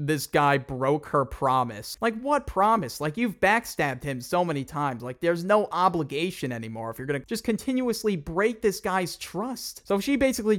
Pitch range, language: 135-190 Hz, English